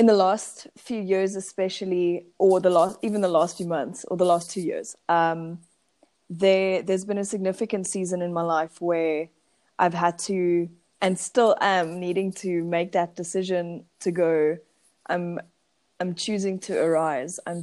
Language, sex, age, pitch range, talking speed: English, female, 20-39, 170-200 Hz, 180 wpm